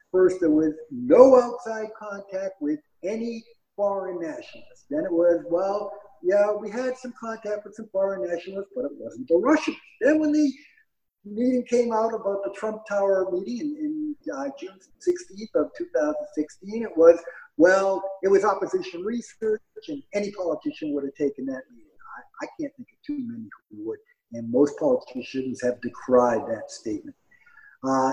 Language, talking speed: English, 165 wpm